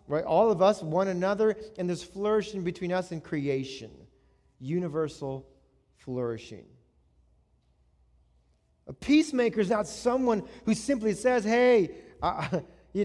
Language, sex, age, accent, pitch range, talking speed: English, male, 40-59, American, 155-220 Hz, 115 wpm